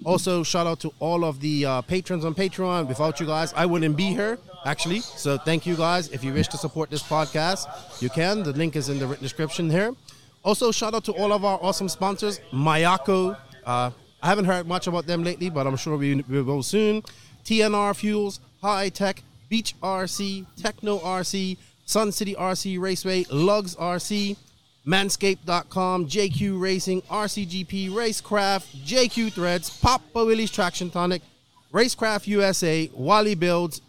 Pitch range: 150-195 Hz